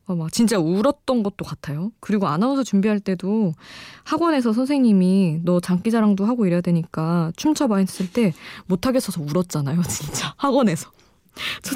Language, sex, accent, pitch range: Korean, female, native, 165-220 Hz